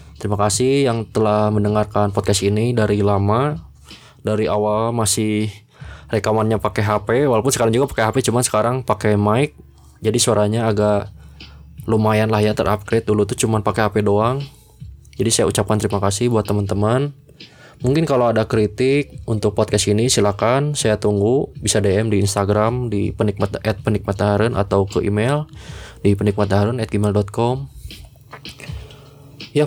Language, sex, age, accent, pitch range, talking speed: Indonesian, male, 20-39, native, 105-120 Hz, 140 wpm